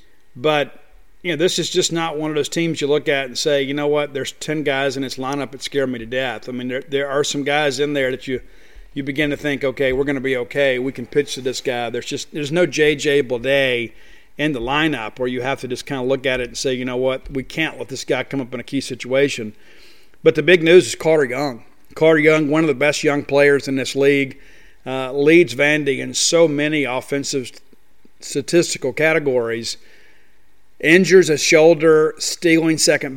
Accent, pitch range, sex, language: American, 130-150 Hz, male, English